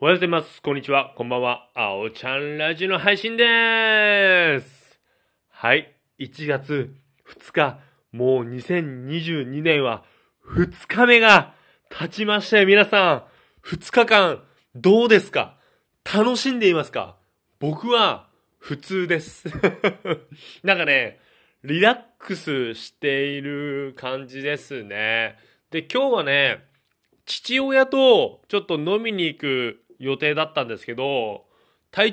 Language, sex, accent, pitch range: Japanese, male, native, 135-210 Hz